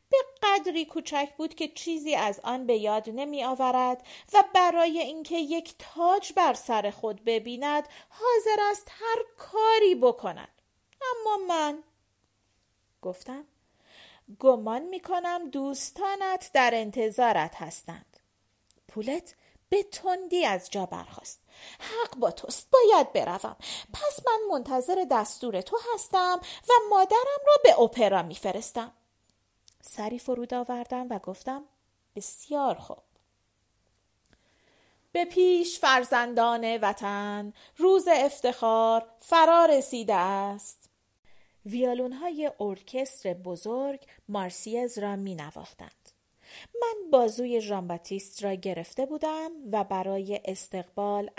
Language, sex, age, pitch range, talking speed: Persian, female, 40-59, 200-335 Hz, 105 wpm